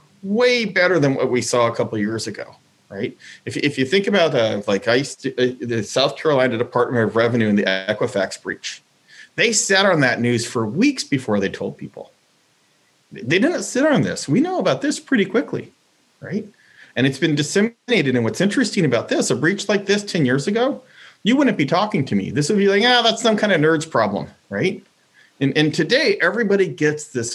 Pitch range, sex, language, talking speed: 115-190 Hz, male, English, 210 wpm